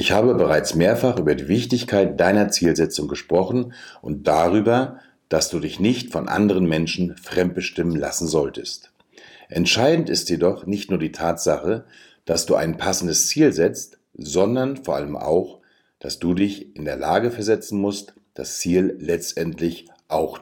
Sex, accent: male, German